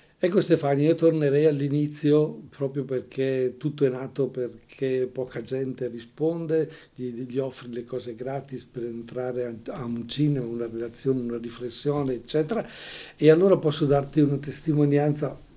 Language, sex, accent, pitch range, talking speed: Portuguese, male, Italian, 120-140 Hz, 135 wpm